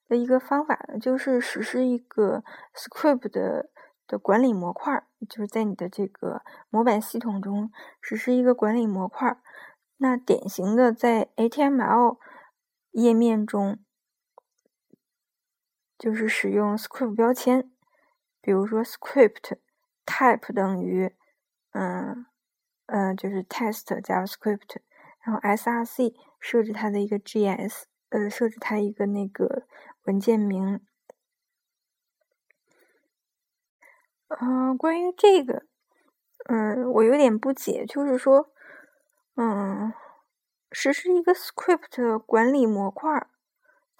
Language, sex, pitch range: Chinese, female, 215-280 Hz